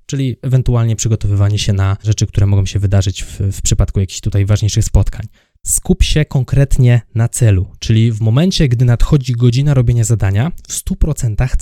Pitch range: 105-125 Hz